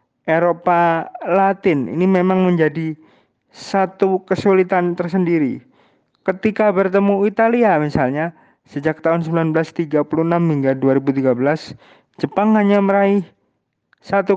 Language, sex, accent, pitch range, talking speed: Indonesian, male, native, 145-195 Hz, 90 wpm